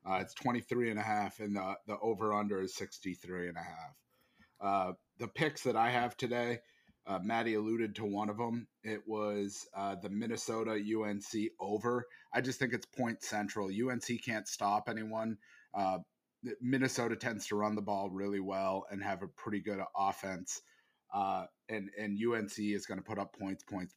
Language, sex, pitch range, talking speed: English, male, 95-115 Hz, 190 wpm